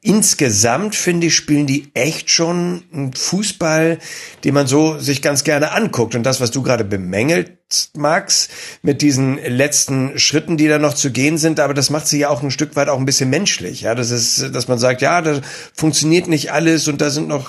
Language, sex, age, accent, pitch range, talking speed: German, male, 60-79, German, 135-175 Hz, 205 wpm